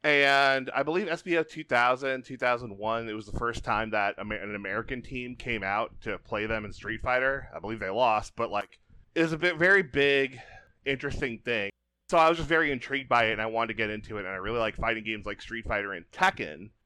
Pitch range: 105-125 Hz